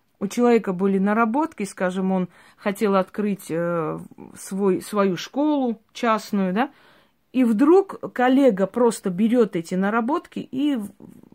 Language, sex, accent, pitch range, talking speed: Russian, female, native, 195-250 Hz, 105 wpm